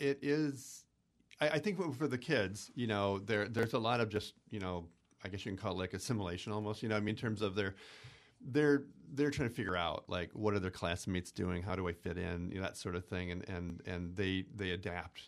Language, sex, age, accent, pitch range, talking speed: English, male, 40-59, American, 95-115 Hz, 255 wpm